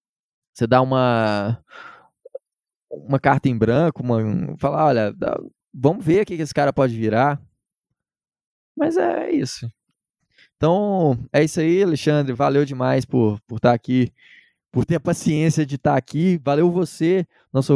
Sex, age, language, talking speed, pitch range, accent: male, 20-39, Portuguese, 150 wpm, 120-145 Hz, Brazilian